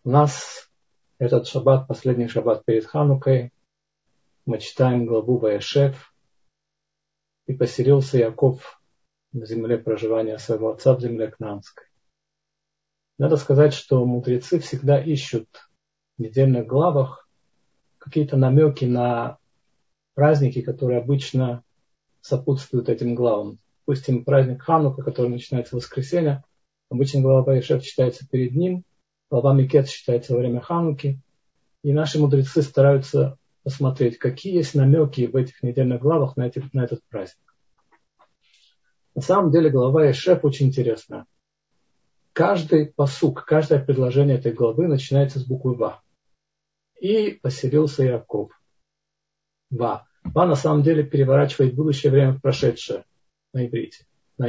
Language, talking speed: Russian, 120 wpm